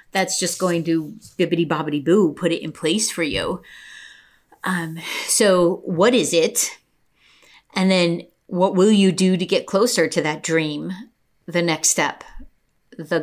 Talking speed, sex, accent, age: 155 wpm, female, American, 30-49